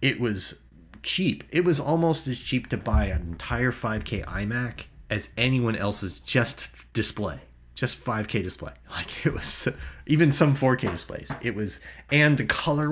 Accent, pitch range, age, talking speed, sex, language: American, 85-110 Hz, 30-49, 160 wpm, male, English